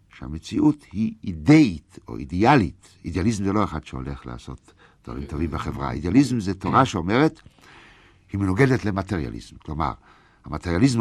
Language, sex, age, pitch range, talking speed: Hebrew, male, 60-79, 80-125 Hz, 125 wpm